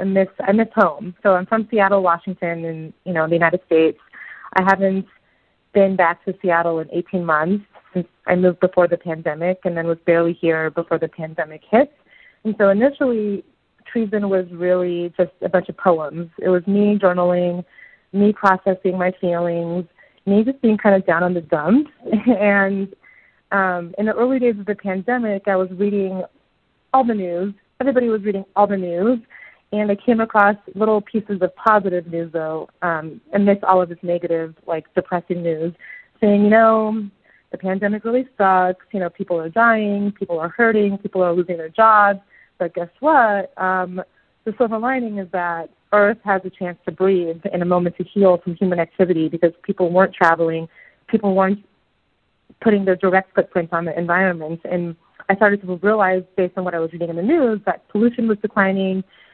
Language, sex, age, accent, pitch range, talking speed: English, female, 30-49, American, 175-205 Hz, 185 wpm